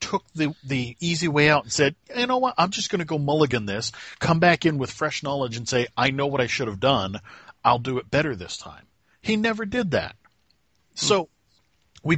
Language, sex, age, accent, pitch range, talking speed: English, male, 40-59, American, 120-160 Hz, 220 wpm